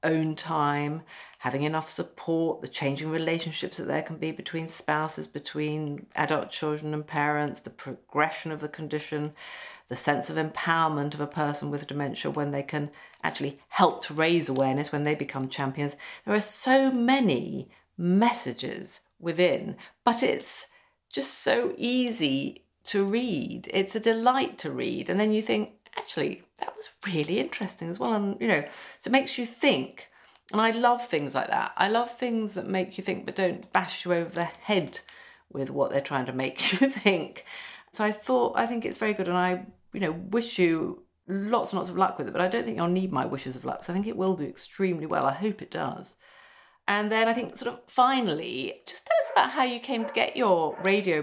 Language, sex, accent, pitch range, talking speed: English, female, British, 150-225 Hz, 200 wpm